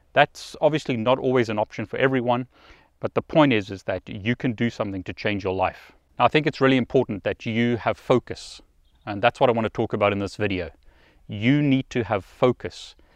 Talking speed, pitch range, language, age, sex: 215 wpm, 100-130 Hz, English, 30-49, male